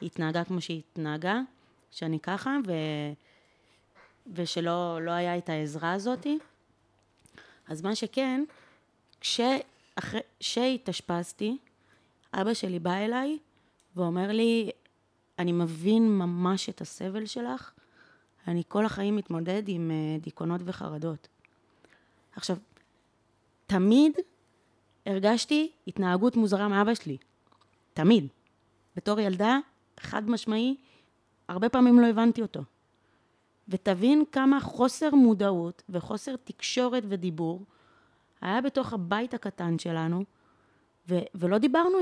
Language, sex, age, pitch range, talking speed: Hebrew, female, 20-39, 170-255 Hz, 100 wpm